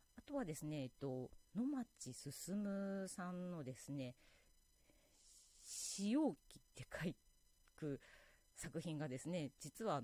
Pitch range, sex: 135-200 Hz, female